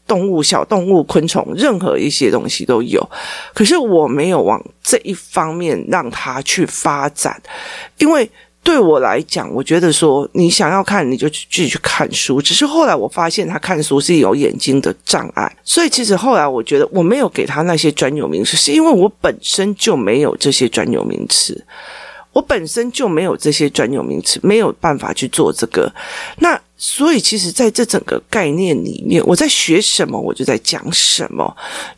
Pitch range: 155-240 Hz